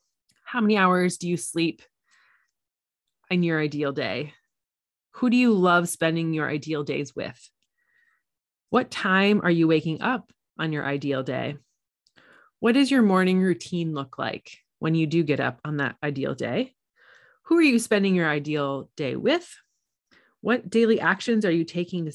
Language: English